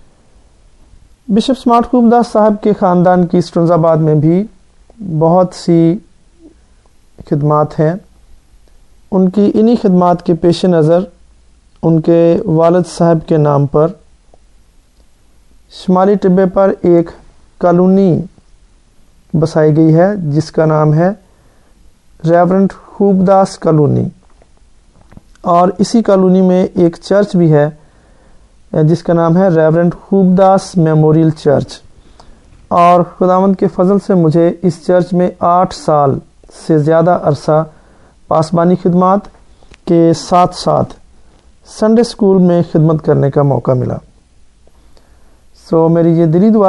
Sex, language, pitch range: male, English, 160-190 Hz